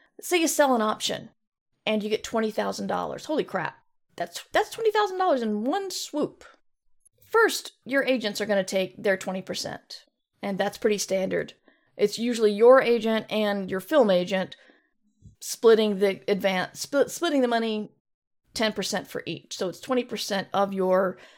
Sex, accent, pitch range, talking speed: female, American, 200-255 Hz, 150 wpm